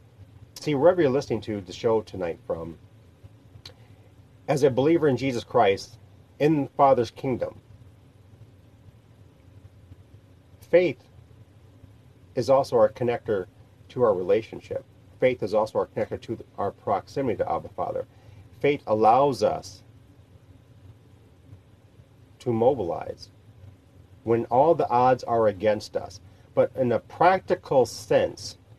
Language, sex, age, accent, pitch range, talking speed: English, male, 40-59, American, 105-145 Hz, 115 wpm